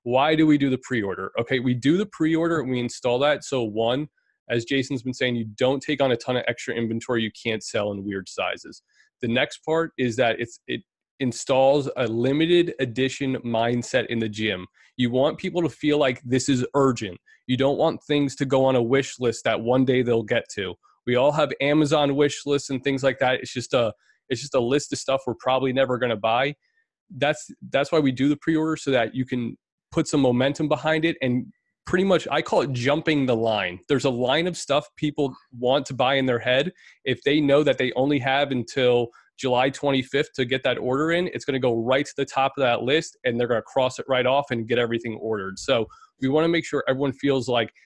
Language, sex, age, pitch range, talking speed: English, male, 30-49, 120-140 Hz, 225 wpm